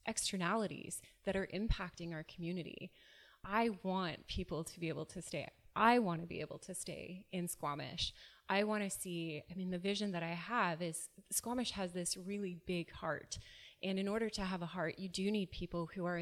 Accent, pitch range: American, 165-190 Hz